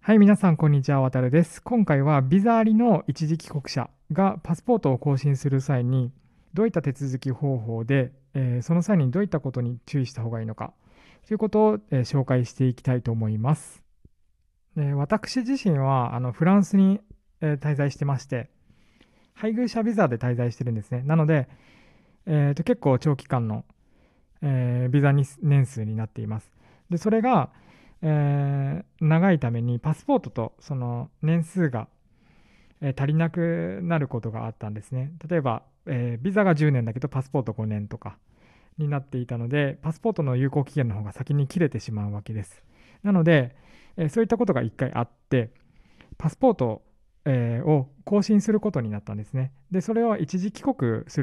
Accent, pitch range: native, 120-170 Hz